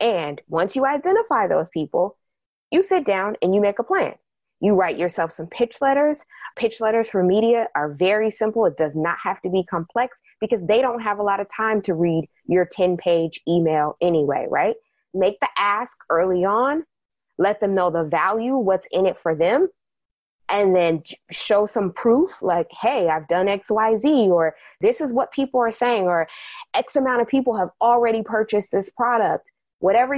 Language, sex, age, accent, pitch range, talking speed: English, female, 20-39, American, 180-255 Hz, 185 wpm